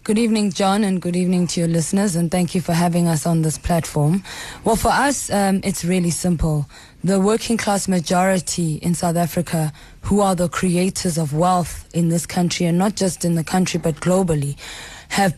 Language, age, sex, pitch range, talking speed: English, 20-39, female, 175-200 Hz, 190 wpm